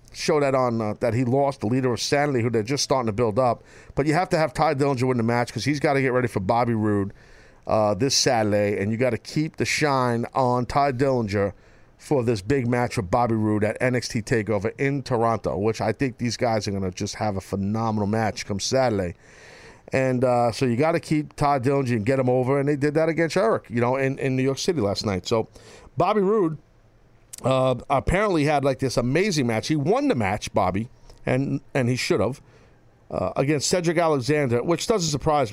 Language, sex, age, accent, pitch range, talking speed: English, male, 50-69, American, 115-150 Hz, 225 wpm